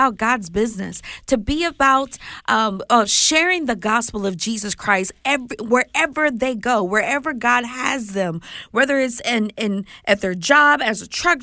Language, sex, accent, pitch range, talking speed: English, female, American, 230-290 Hz, 165 wpm